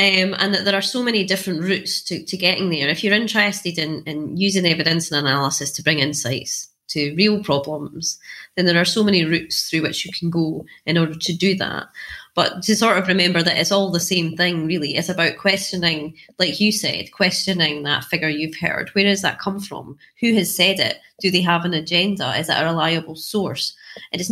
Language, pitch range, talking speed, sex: English, 160-195 Hz, 215 wpm, female